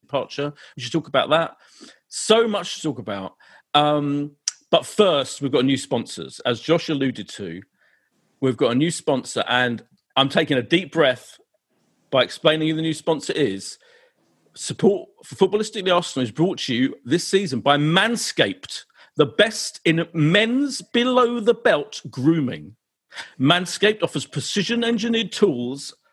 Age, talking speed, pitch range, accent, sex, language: 50-69, 150 wpm, 135-190 Hz, British, male, English